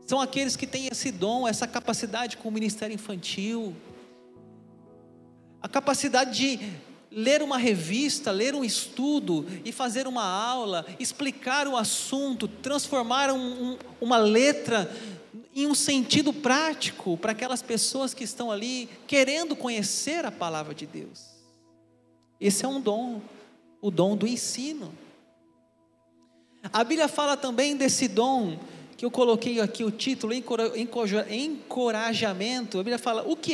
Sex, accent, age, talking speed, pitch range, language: male, Brazilian, 40-59, 130 wpm, 190-255 Hz, Portuguese